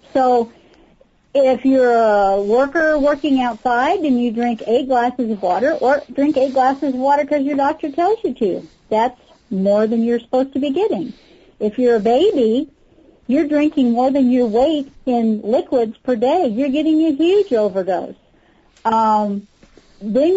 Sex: female